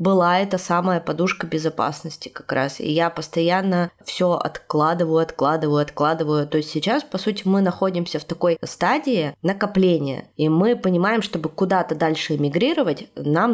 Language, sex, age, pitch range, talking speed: Russian, female, 20-39, 155-195 Hz, 145 wpm